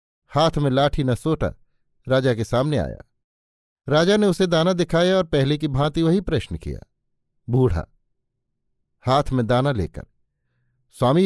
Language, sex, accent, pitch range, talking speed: Hindi, male, native, 115-165 Hz, 145 wpm